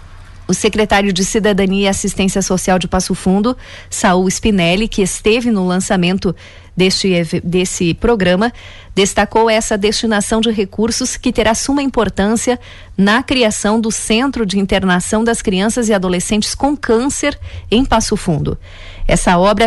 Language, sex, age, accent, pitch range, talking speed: Portuguese, female, 40-59, Brazilian, 185-225 Hz, 135 wpm